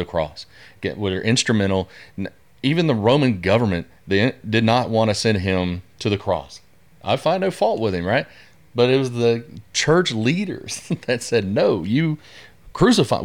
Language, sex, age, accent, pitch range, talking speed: English, male, 30-49, American, 95-115 Hz, 170 wpm